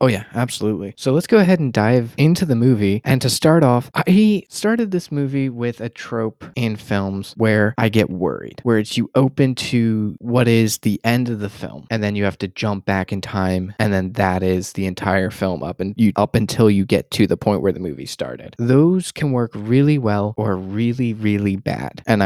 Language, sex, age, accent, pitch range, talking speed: English, male, 20-39, American, 100-125 Hz, 220 wpm